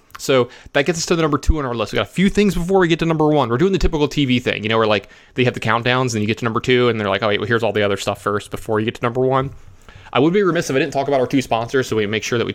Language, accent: English, American